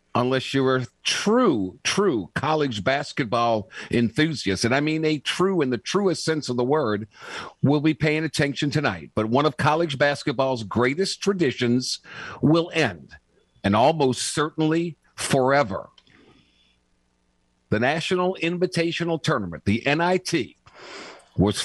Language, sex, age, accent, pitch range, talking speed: English, male, 50-69, American, 110-165 Hz, 125 wpm